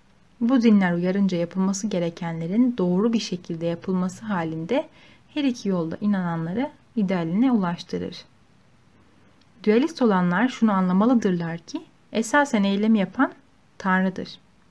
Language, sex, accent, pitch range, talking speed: Turkish, female, native, 180-230 Hz, 100 wpm